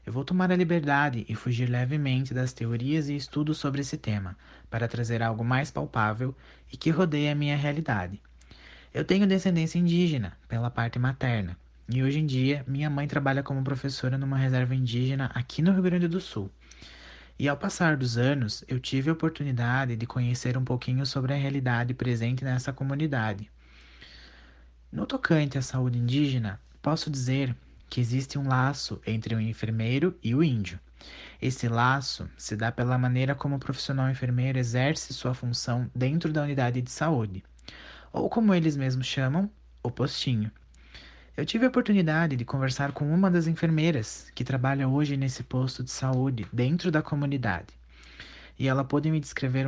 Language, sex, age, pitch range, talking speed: Portuguese, male, 20-39, 120-145 Hz, 165 wpm